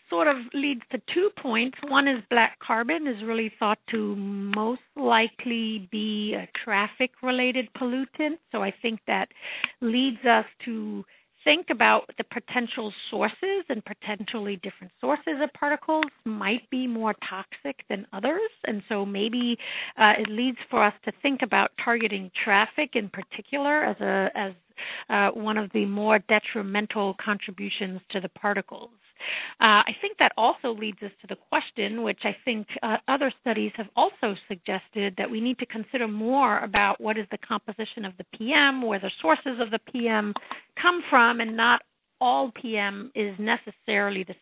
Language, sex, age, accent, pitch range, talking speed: English, female, 50-69, American, 205-255 Hz, 165 wpm